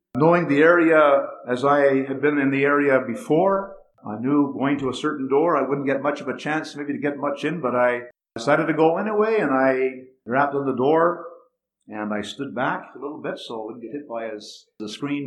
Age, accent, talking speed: 50-69, American, 230 wpm